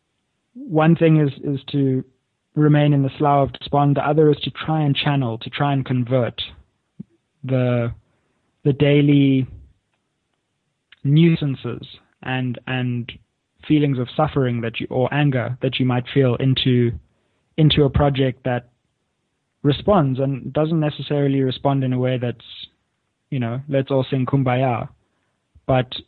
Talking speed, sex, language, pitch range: 140 wpm, male, English, 125-145 Hz